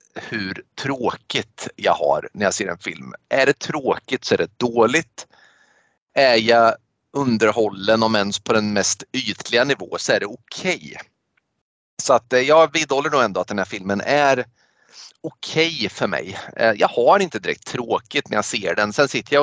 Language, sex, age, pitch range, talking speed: Swedish, male, 30-49, 100-135 Hz, 180 wpm